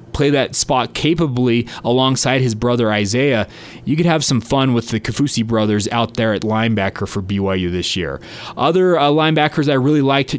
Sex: male